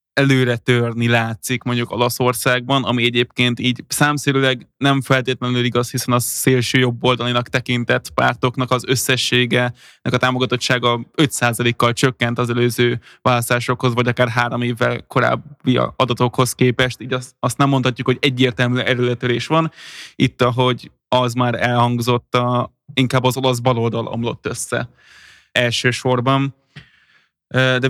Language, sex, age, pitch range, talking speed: Hungarian, male, 20-39, 120-135 Hz, 125 wpm